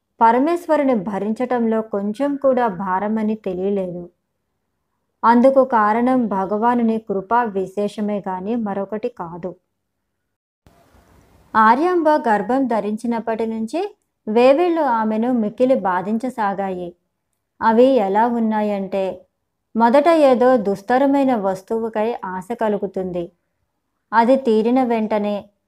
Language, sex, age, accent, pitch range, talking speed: Telugu, male, 20-39, native, 200-255 Hz, 80 wpm